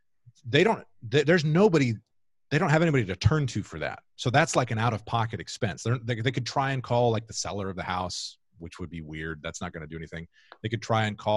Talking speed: 260 wpm